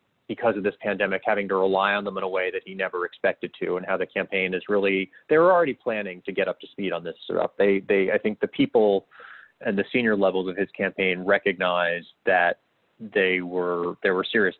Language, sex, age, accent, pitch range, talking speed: English, male, 30-49, American, 90-100 Hz, 220 wpm